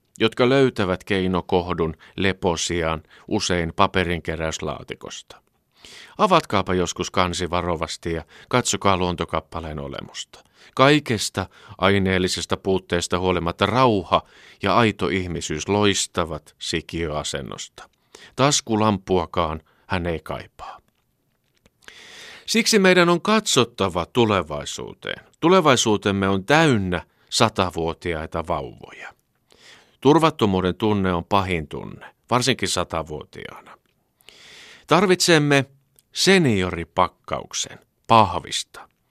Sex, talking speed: male, 75 wpm